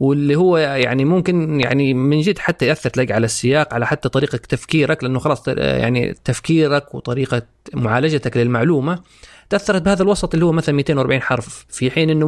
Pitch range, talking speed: 120-155 Hz, 165 wpm